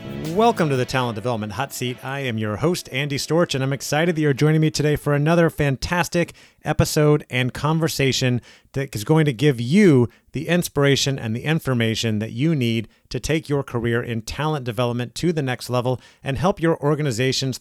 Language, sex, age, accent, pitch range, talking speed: English, male, 30-49, American, 120-150 Hz, 190 wpm